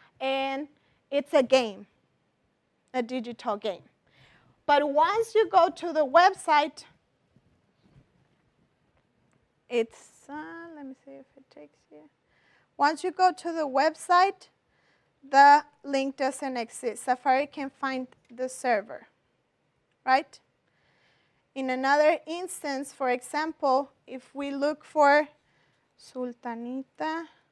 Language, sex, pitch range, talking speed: English, female, 255-310 Hz, 105 wpm